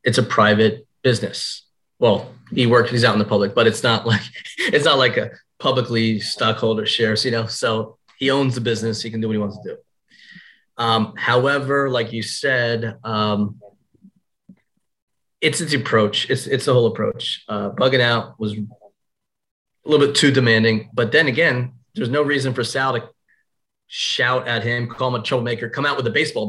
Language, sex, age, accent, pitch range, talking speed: English, male, 30-49, American, 110-130 Hz, 185 wpm